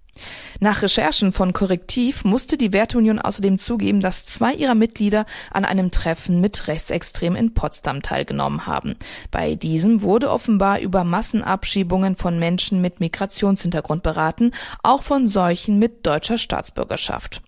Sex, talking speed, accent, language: female, 135 wpm, German, German